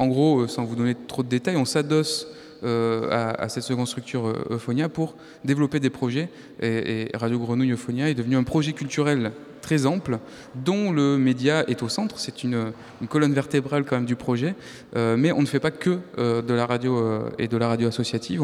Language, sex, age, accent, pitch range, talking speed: French, male, 20-39, French, 115-140 Hz, 210 wpm